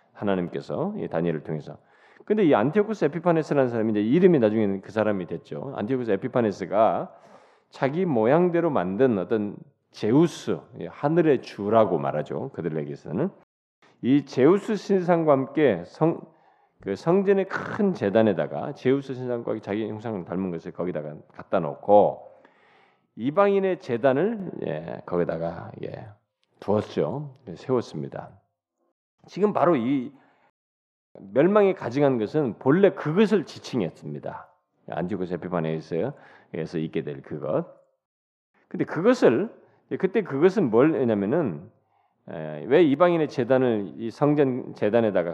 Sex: male